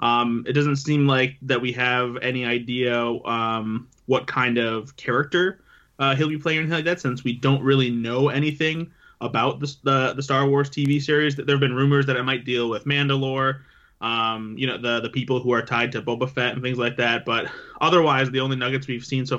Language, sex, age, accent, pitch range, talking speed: English, male, 20-39, American, 120-140 Hz, 225 wpm